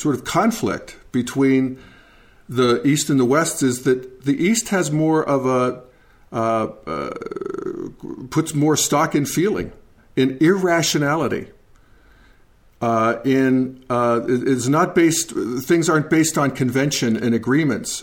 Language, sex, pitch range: English, male, 125-150 Hz